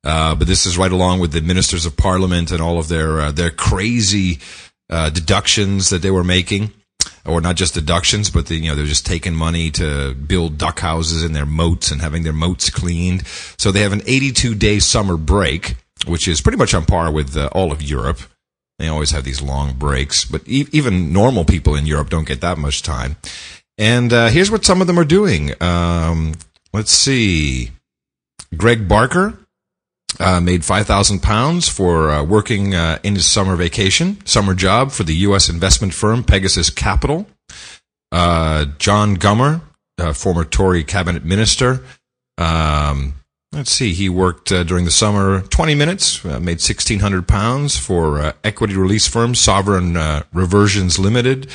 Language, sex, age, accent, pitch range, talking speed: English, male, 40-59, American, 80-105 Hz, 175 wpm